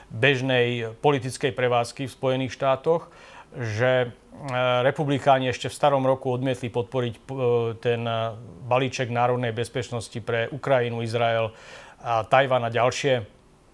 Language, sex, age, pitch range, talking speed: Slovak, male, 40-59, 120-135 Hz, 110 wpm